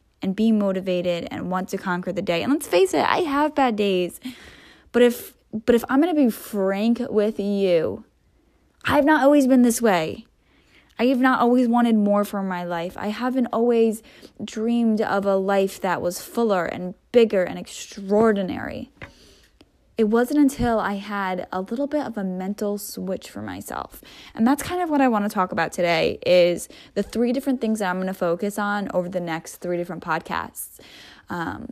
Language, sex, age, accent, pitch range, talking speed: English, female, 10-29, American, 185-235 Hz, 190 wpm